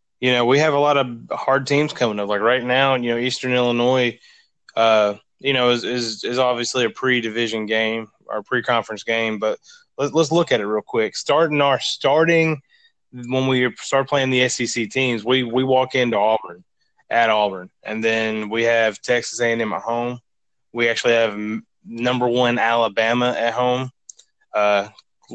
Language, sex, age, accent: English, male, 20-39, American